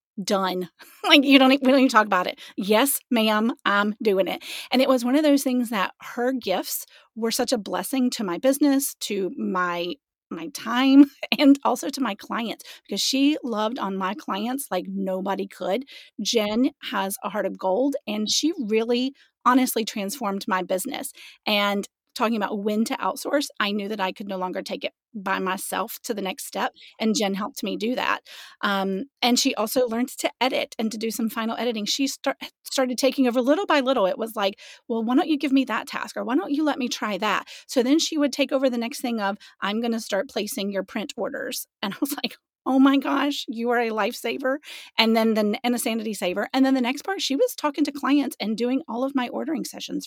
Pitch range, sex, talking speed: 210-275 Hz, female, 220 wpm